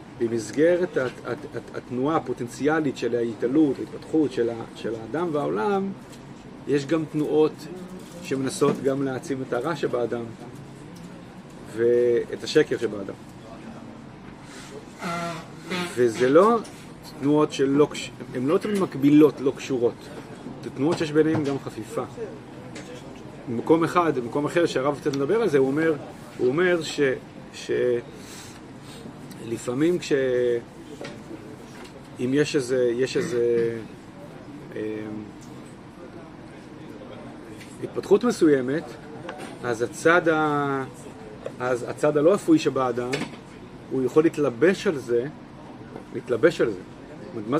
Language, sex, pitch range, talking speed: Hebrew, male, 125-160 Hz, 100 wpm